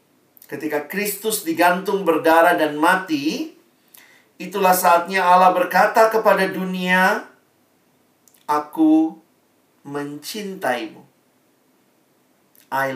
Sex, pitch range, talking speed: male, 130-185 Hz, 70 wpm